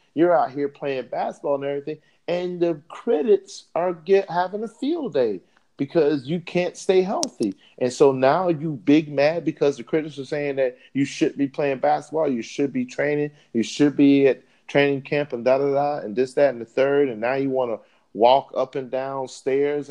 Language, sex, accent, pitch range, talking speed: English, male, American, 125-175 Hz, 200 wpm